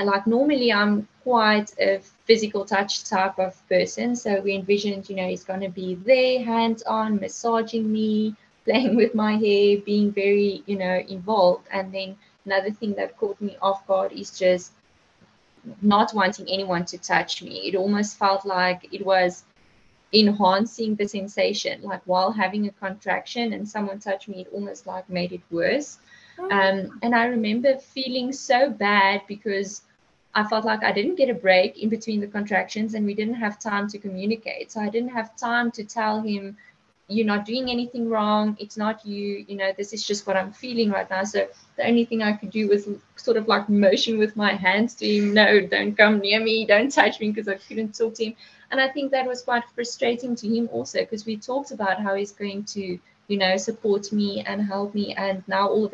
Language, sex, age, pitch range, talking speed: English, female, 20-39, 195-220 Hz, 200 wpm